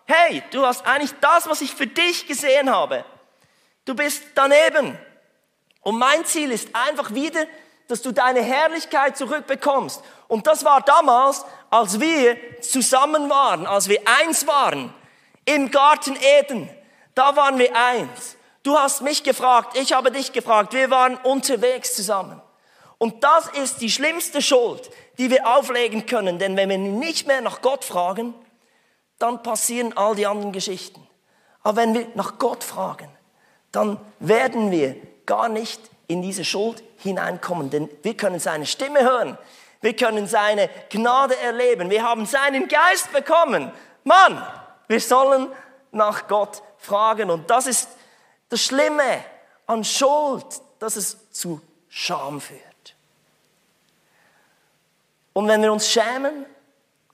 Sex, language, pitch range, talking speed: male, German, 220-285 Hz, 140 wpm